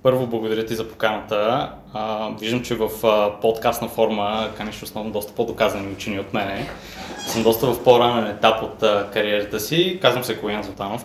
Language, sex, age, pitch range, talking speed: Bulgarian, male, 20-39, 105-130 Hz, 160 wpm